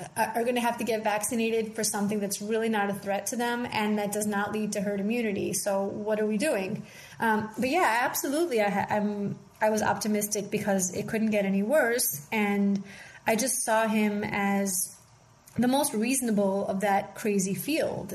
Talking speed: 185 wpm